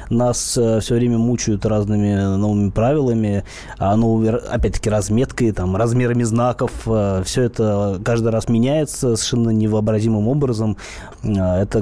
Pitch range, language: 110-130 Hz, Russian